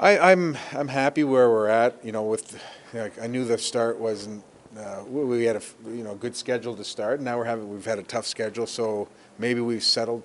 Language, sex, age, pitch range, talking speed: English, male, 30-49, 100-115 Hz, 235 wpm